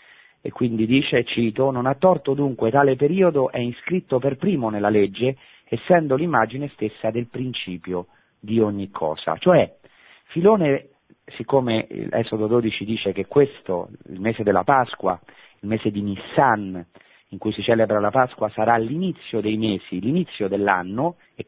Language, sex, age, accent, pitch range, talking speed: Italian, male, 40-59, native, 105-140 Hz, 150 wpm